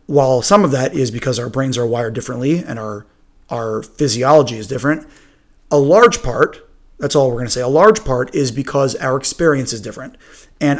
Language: English